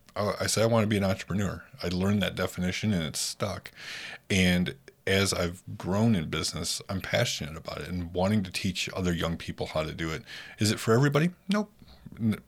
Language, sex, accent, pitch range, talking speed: English, male, American, 85-100 Hz, 195 wpm